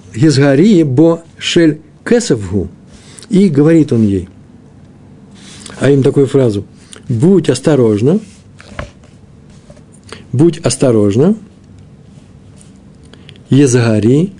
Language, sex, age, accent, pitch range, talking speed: Russian, male, 60-79, native, 110-165 Hz, 50 wpm